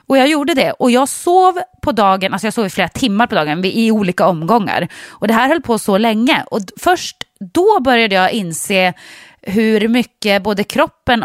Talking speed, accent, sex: 195 wpm, Swedish, female